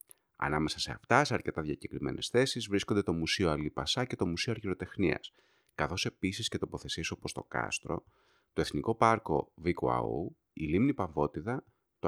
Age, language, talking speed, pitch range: 30-49, Greek, 160 wpm, 80-115 Hz